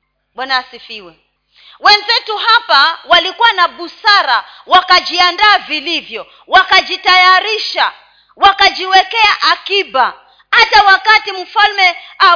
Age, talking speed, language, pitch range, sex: 30-49, 80 wpm, Swahili, 280-400 Hz, female